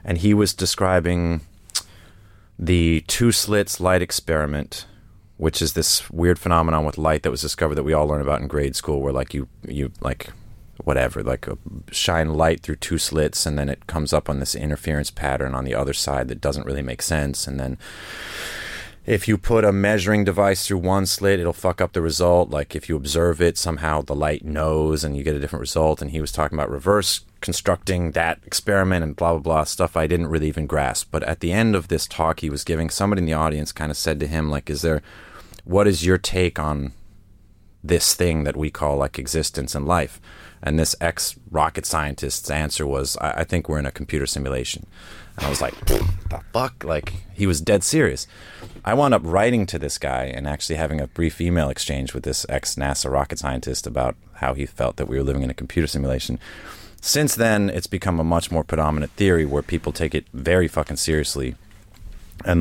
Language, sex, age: English, male, 30-49